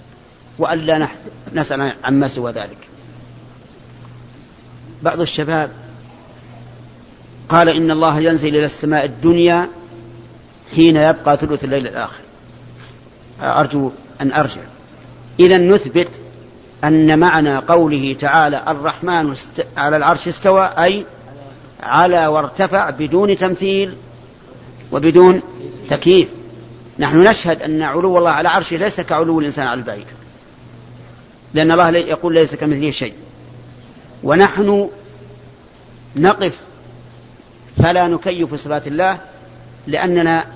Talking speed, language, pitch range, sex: 100 wpm, Arabic, 125-170 Hz, male